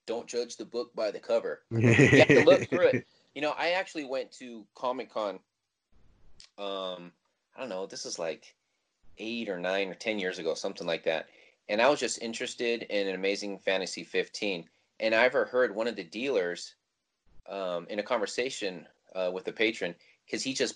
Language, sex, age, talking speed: English, male, 30-49, 190 wpm